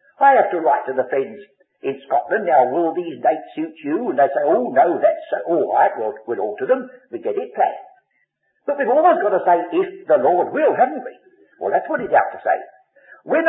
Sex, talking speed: male, 230 wpm